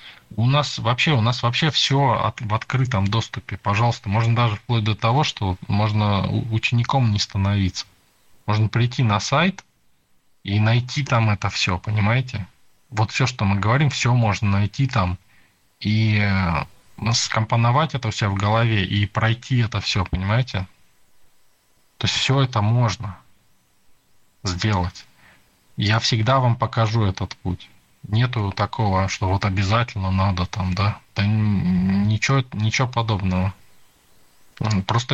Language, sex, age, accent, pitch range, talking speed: Russian, male, 20-39, native, 95-120 Hz, 130 wpm